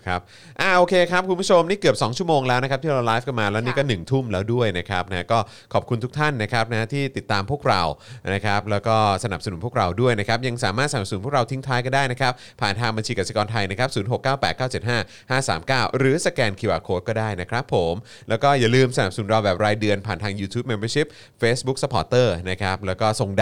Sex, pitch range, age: male, 100-135 Hz, 20-39